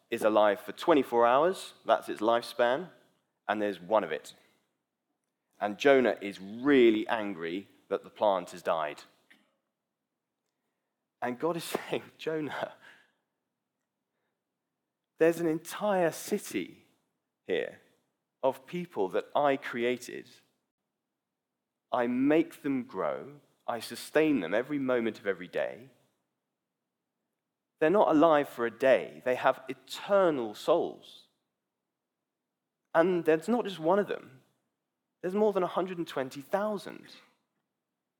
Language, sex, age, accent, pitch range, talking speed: English, male, 30-49, British, 120-180 Hz, 110 wpm